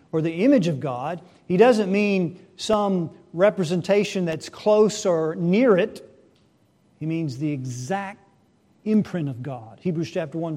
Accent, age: American, 50-69